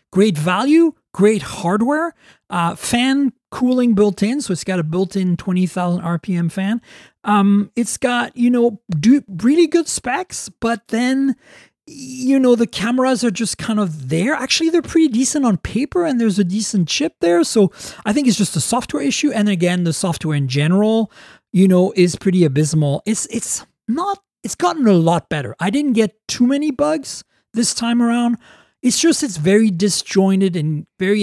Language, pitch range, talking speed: English, 175-255 Hz, 170 wpm